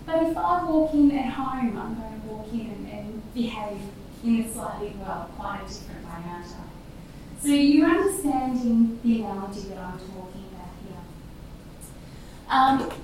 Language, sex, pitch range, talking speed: English, female, 225-310 Hz, 150 wpm